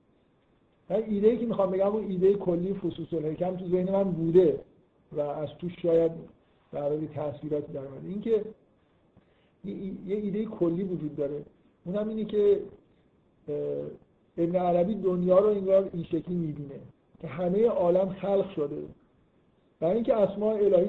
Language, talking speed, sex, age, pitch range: Persian, 140 wpm, male, 50-69, 150-185 Hz